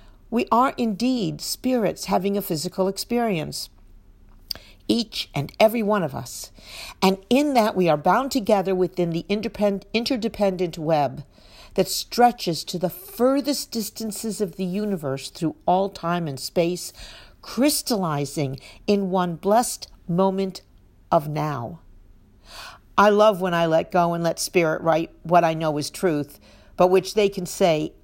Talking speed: 140 wpm